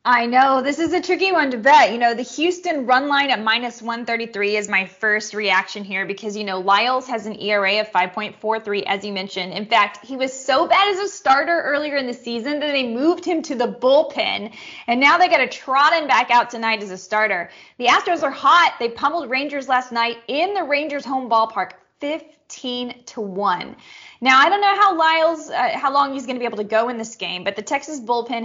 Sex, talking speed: female, 230 wpm